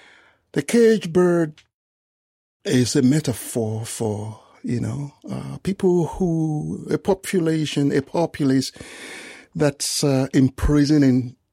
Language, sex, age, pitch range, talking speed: English, male, 60-79, 105-145 Hz, 100 wpm